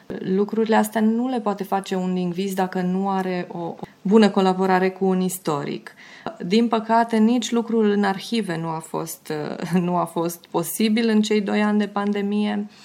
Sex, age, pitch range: female, 30-49, 185-220 Hz